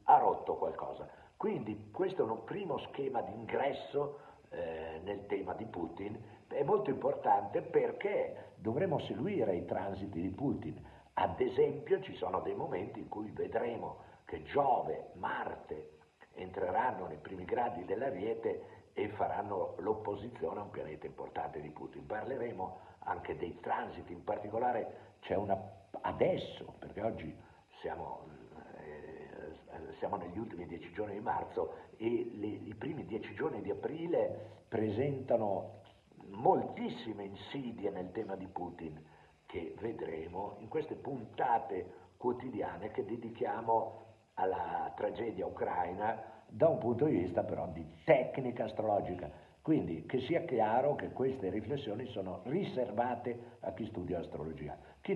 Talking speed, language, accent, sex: 130 wpm, Italian, native, male